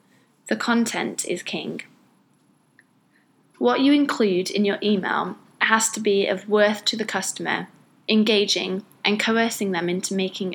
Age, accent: 20-39, British